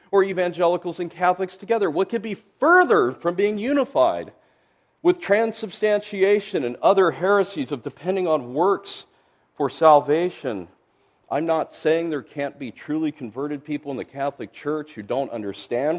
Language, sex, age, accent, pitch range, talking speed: English, male, 40-59, American, 130-190 Hz, 145 wpm